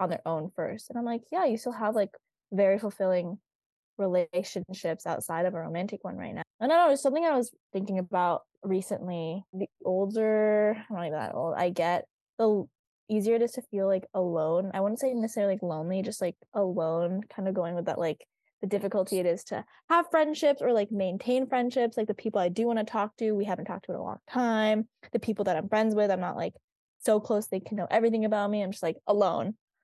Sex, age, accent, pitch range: female, 10-29, American, 180-225 Hz